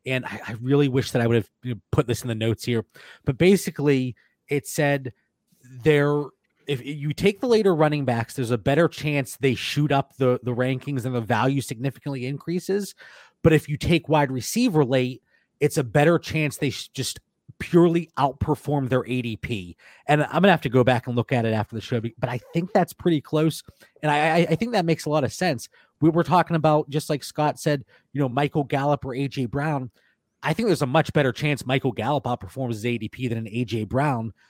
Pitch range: 125-155 Hz